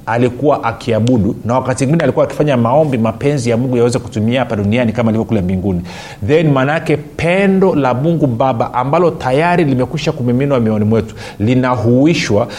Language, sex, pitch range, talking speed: Swahili, male, 125-170 Hz, 155 wpm